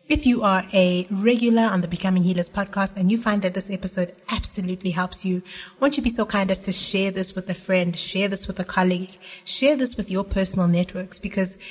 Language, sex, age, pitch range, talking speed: English, female, 30-49, 185-210 Hz, 225 wpm